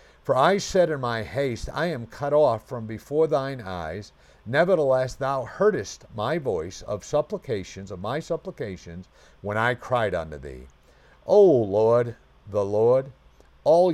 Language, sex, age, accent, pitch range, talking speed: English, male, 50-69, American, 110-155 Hz, 145 wpm